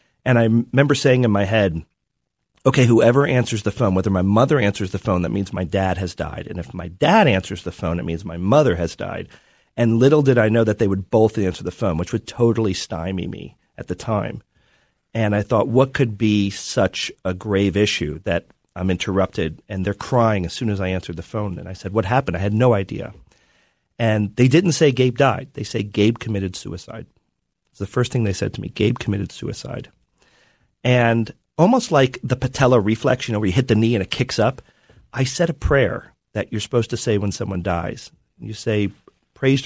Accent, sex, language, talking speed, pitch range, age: American, male, English, 215 wpm, 95-125 Hz, 40-59